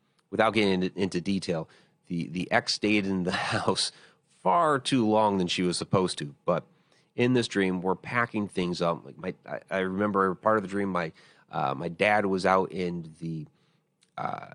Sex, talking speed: male, 180 wpm